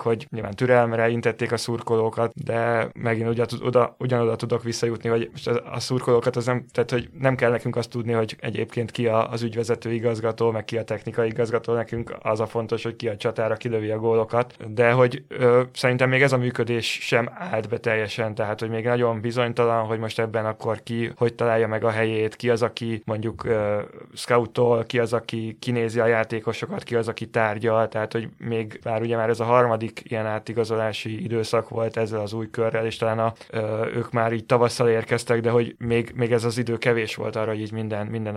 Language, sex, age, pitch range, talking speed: Hungarian, male, 20-39, 115-120 Hz, 205 wpm